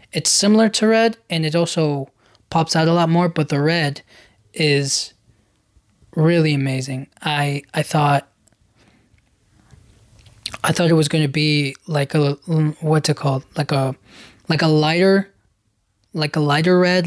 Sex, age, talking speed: male, 20-39, 145 wpm